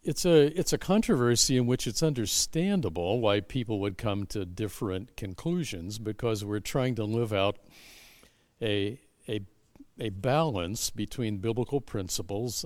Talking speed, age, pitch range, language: 135 wpm, 60-79, 100-140 Hz, English